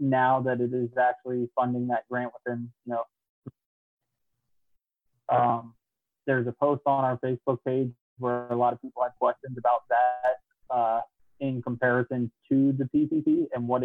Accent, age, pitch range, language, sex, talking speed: American, 20-39, 120-130 Hz, English, male, 155 wpm